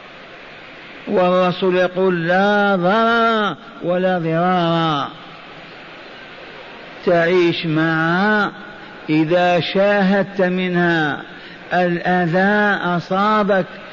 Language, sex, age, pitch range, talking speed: Arabic, male, 50-69, 180-205 Hz, 55 wpm